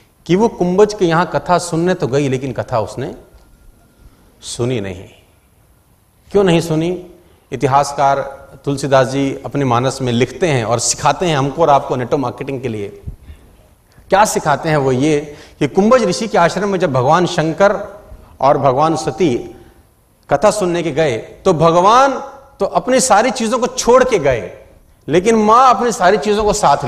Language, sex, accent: Hindi, male, native